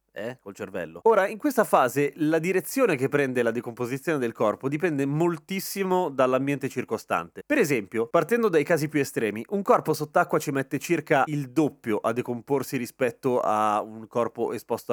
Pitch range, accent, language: 120-170 Hz, native, Italian